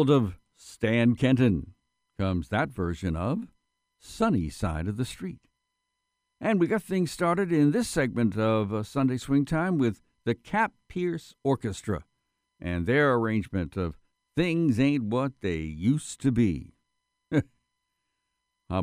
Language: English